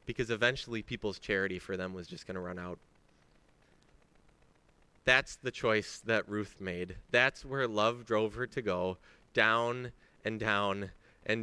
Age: 30-49